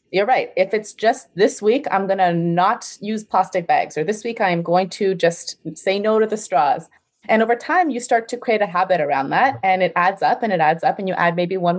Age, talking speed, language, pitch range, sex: 30-49, 255 wpm, English, 155-190 Hz, female